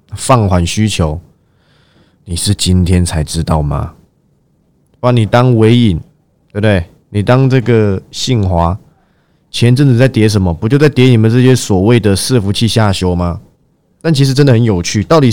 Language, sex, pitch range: Chinese, male, 95-130 Hz